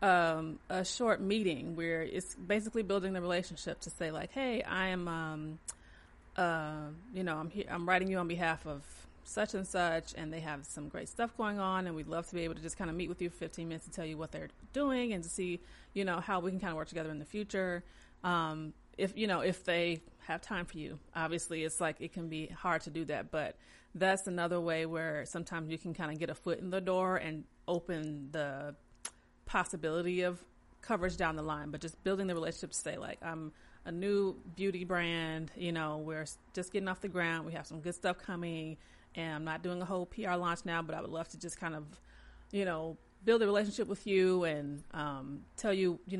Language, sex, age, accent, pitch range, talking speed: English, female, 30-49, American, 160-190 Hz, 230 wpm